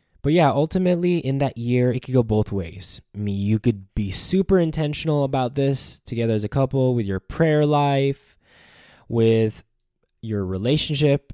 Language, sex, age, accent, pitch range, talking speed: English, male, 10-29, American, 110-145 Hz, 165 wpm